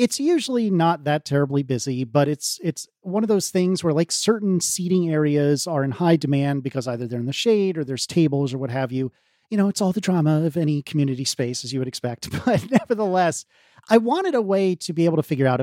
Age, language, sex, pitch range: 40-59, English, male, 140-195 Hz